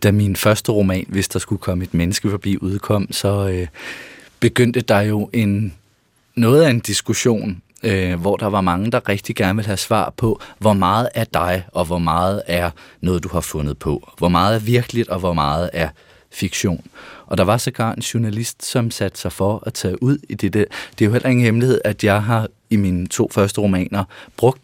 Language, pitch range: Danish, 95-115 Hz